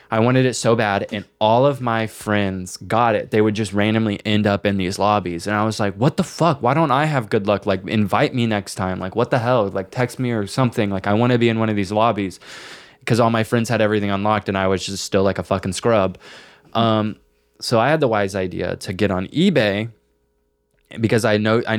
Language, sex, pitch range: English, male, 95-110 Hz